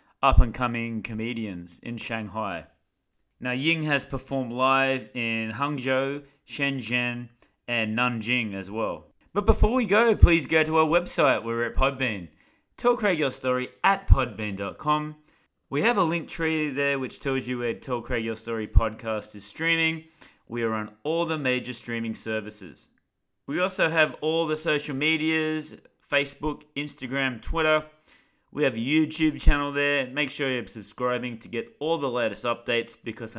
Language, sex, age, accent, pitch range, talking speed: English, male, 20-39, Australian, 110-145 Hz, 160 wpm